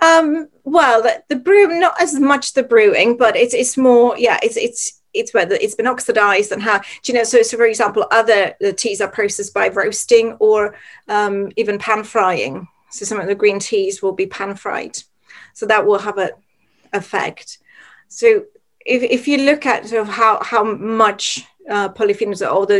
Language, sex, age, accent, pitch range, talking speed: English, female, 40-59, British, 200-270 Hz, 195 wpm